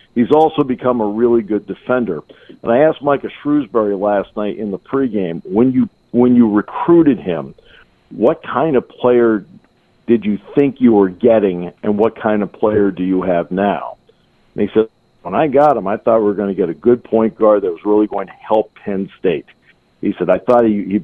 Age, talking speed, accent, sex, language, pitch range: 50-69, 205 wpm, American, male, English, 100-125 Hz